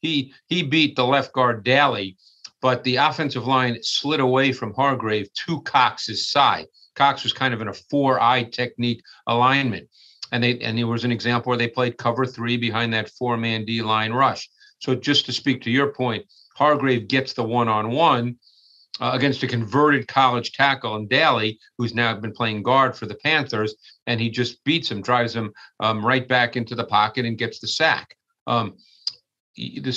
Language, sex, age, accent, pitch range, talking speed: English, male, 50-69, American, 115-135 Hz, 185 wpm